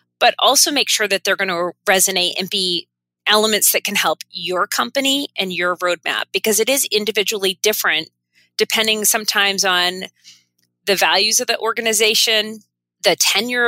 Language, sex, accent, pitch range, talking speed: English, female, American, 180-220 Hz, 155 wpm